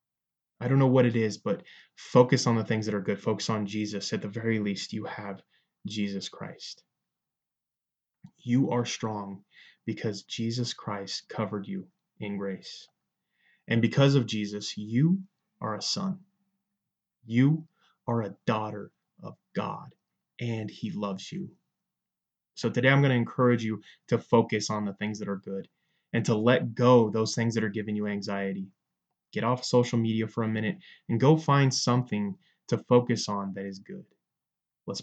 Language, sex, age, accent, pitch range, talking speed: English, male, 20-39, American, 105-130 Hz, 170 wpm